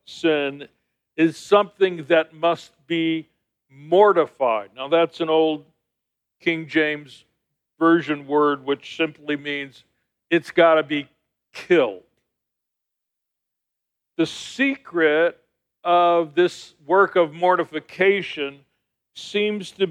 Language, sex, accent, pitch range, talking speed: English, male, American, 150-180 Hz, 95 wpm